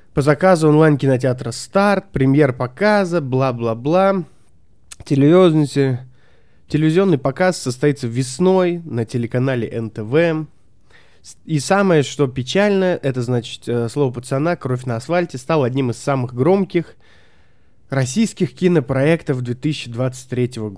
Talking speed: 90 wpm